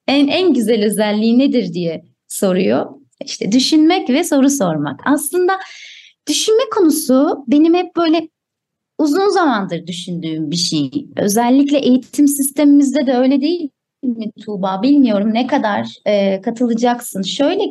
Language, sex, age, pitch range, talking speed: Turkish, female, 30-49, 215-300 Hz, 120 wpm